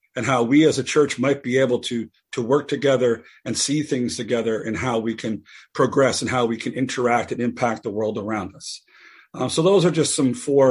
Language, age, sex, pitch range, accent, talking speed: English, 40-59, male, 120-155 Hz, American, 225 wpm